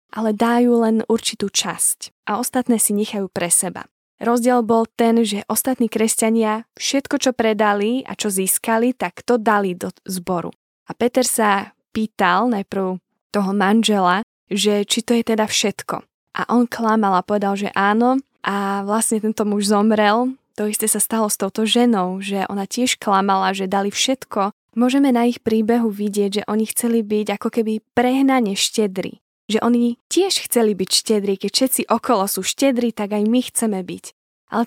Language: Slovak